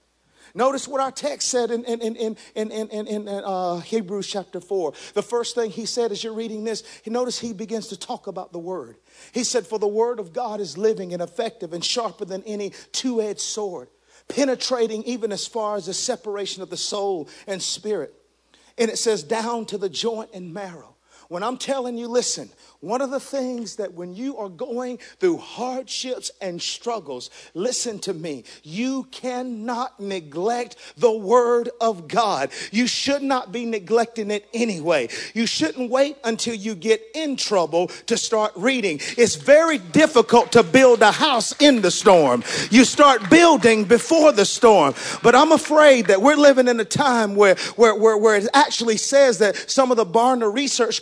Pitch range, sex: 210-255 Hz, male